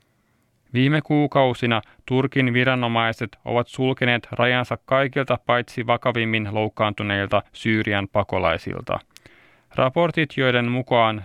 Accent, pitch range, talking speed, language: native, 110-125 Hz, 85 wpm, Finnish